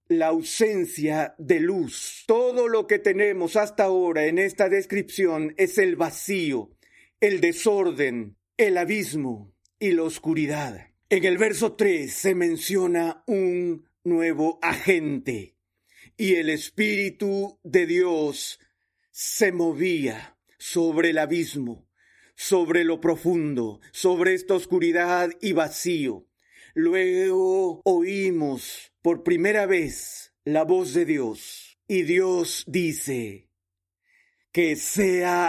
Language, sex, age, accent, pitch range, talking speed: Spanish, male, 40-59, Mexican, 170-275 Hz, 110 wpm